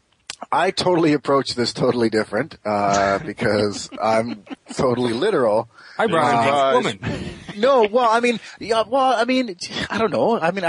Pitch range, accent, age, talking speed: 125-170 Hz, American, 40-59, 155 wpm